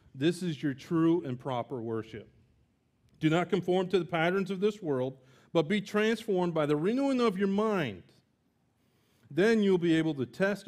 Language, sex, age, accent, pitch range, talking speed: English, male, 40-59, American, 130-185 Hz, 175 wpm